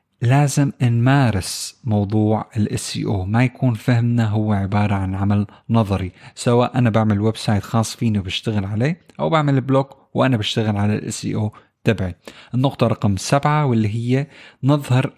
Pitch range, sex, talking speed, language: 110-140 Hz, male, 145 wpm, Arabic